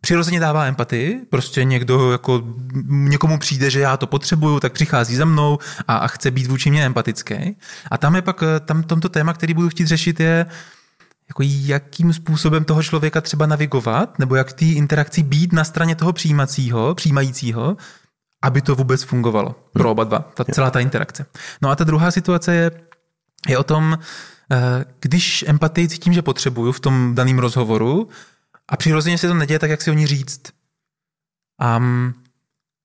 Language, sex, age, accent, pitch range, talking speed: Czech, male, 20-39, native, 125-160 Hz, 170 wpm